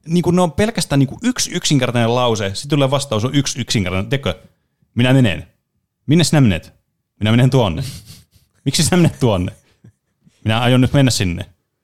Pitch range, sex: 110-145 Hz, male